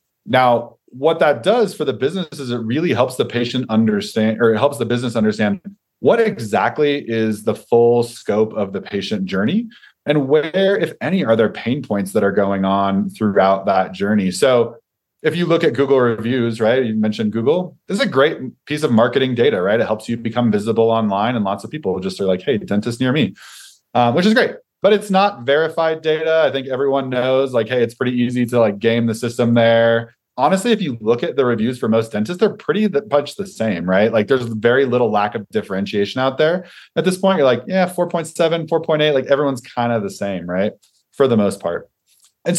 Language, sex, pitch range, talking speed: English, male, 110-155 Hz, 215 wpm